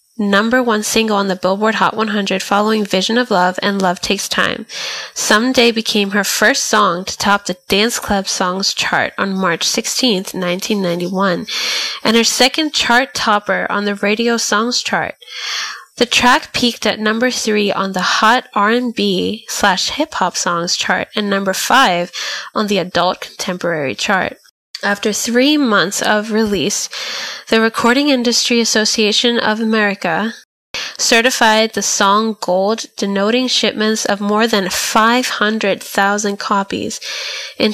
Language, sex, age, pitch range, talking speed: English, female, 10-29, 195-235 Hz, 135 wpm